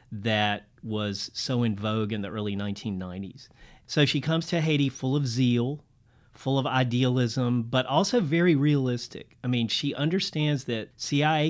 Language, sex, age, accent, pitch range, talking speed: English, male, 40-59, American, 110-140 Hz, 155 wpm